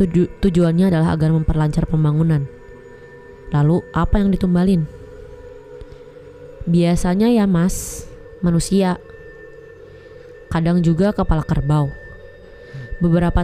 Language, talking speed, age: Indonesian, 85 wpm, 20-39